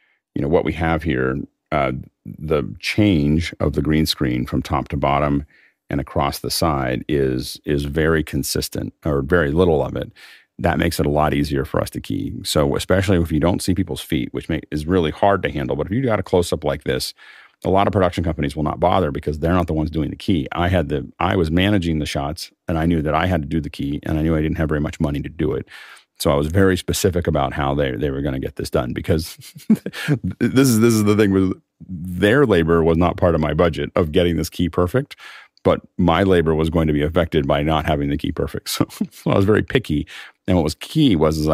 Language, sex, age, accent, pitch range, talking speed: English, male, 40-59, American, 75-90 Hz, 250 wpm